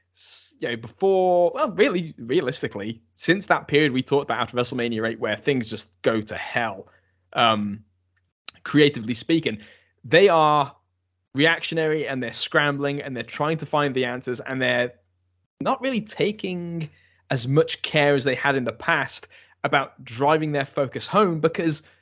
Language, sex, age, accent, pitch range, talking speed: English, male, 10-29, British, 115-150 Hz, 150 wpm